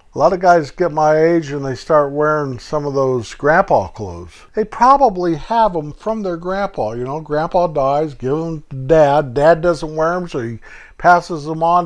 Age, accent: 50-69, American